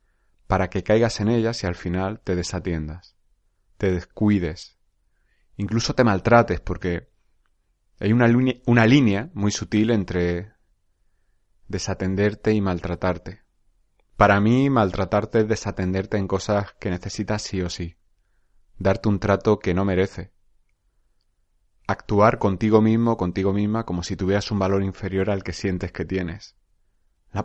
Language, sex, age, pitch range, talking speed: Spanish, male, 30-49, 90-105 Hz, 135 wpm